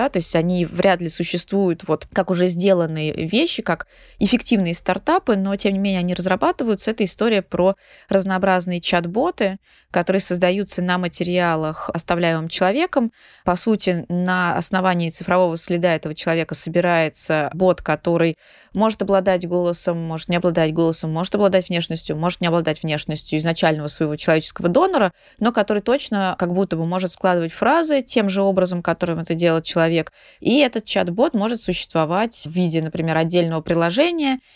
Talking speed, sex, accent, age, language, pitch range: 150 wpm, female, native, 20-39, Russian, 165-195 Hz